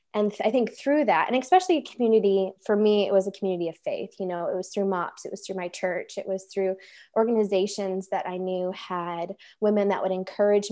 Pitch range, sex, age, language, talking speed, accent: 185-210 Hz, female, 20-39, English, 230 wpm, American